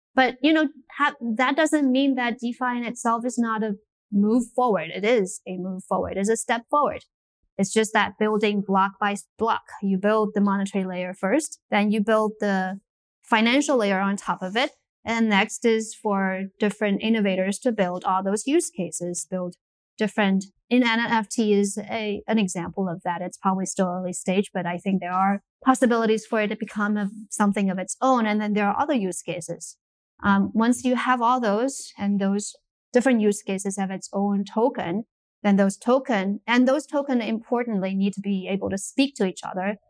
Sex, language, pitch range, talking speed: female, English, 190-230 Hz, 190 wpm